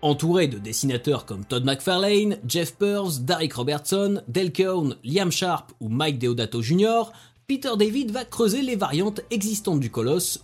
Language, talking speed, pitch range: French, 155 wpm, 140-225 Hz